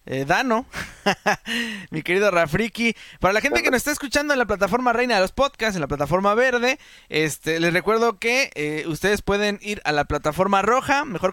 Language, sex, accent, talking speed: Spanish, male, Mexican, 190 wpm